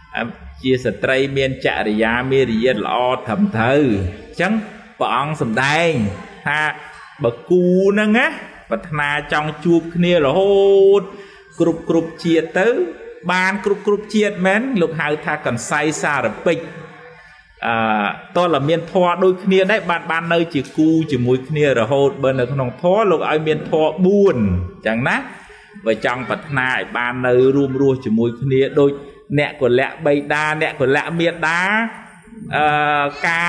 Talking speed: 50 wpm